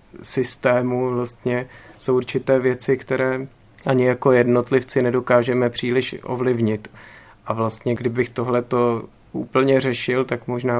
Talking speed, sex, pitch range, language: 115 wpm, male, 120-135 Hz, Czech